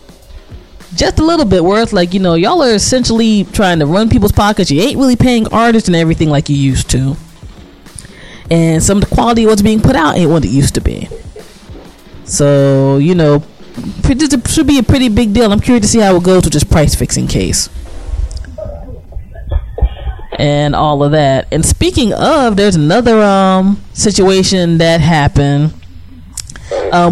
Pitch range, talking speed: 145-200 Hz, 170 wpm